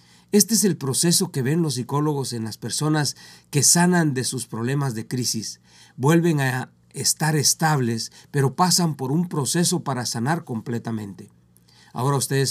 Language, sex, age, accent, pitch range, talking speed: Spanish, male, 50-69, Mexican, 115-150 Hz, 155 wpm